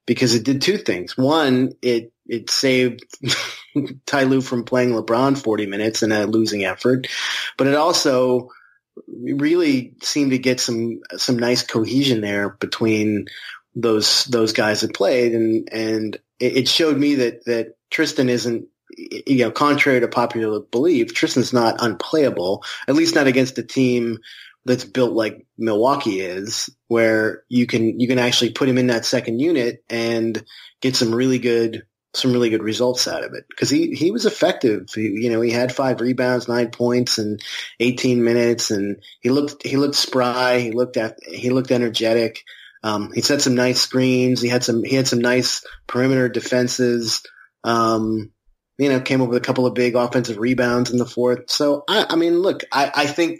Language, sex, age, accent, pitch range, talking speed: English, male, 30-49, American, 115-130 Hz, 180 wpm